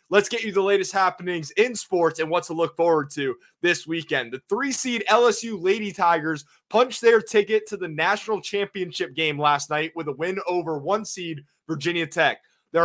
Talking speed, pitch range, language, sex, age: 190 wpm, 165-215 Hz, English, male, 20-39